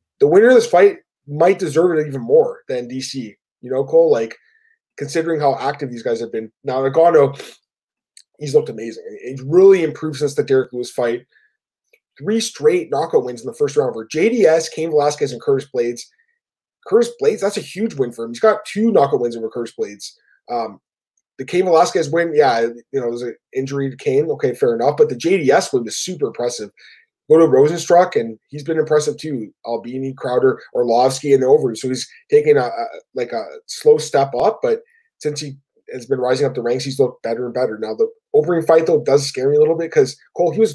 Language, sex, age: English, male, 20-39